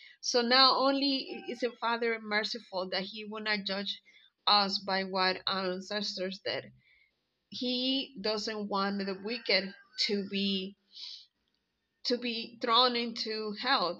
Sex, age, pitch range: female, 20-39, 190-225 Hz